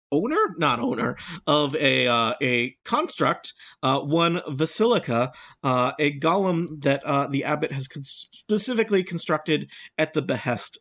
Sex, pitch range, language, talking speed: male, 120-160 Hz, English, 140 wpm